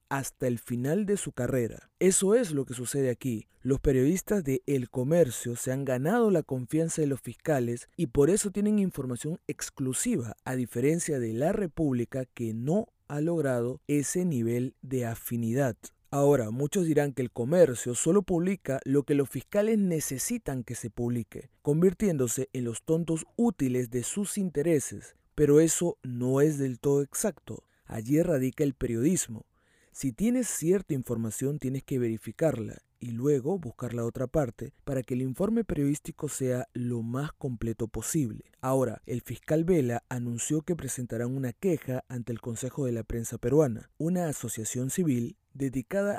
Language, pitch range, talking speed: Spanish, 120-160 Hz, 160 wpm